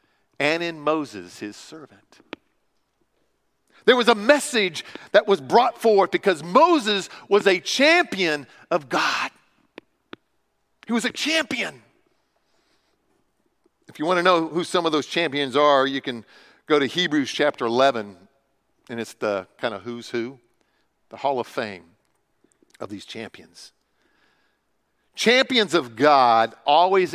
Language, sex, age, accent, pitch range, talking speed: English, male, 50-69, American, 155-255 Hz, 135 wpm